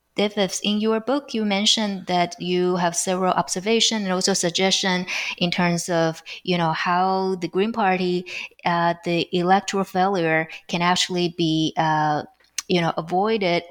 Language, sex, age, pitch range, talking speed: English, female, 20-39, 165-190 Hz, 145 wpm